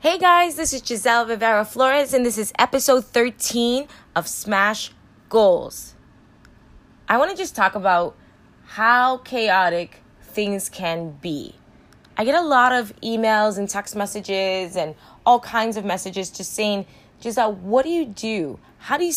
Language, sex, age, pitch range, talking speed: English, female, 20-39, 195-255 Hz, 155 wpm